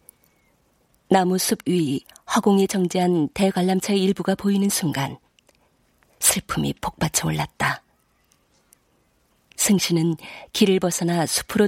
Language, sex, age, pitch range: Korean, female, 40-59, 160-200 Hz